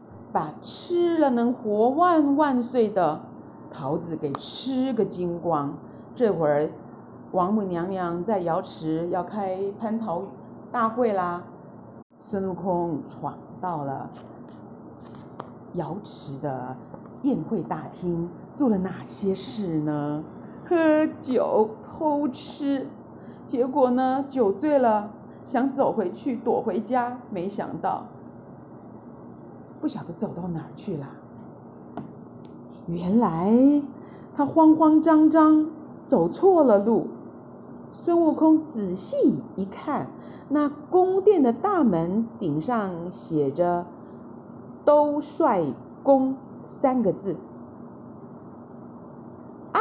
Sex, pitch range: female, 190-305 Hz